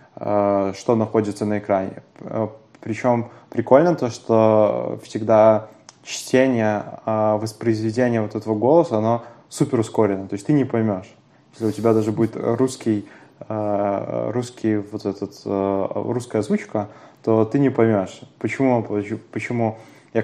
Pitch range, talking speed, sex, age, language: 105-120 Hz, 120 wpm, male, 20-39, Russian